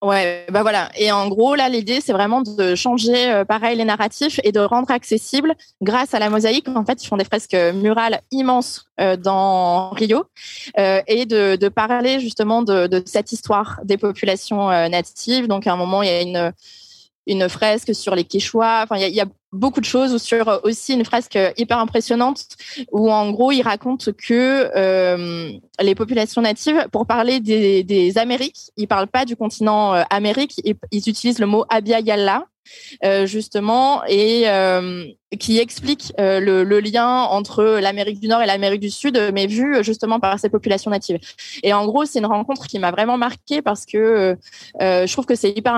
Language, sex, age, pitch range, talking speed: French, female, 20-39, 195-240 Hz, 195 wpm